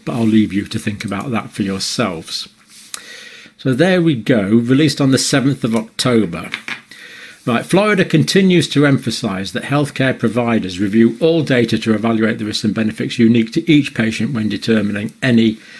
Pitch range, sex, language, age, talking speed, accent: 110-135 Hz, male, English, 50-69, 165 wpm, British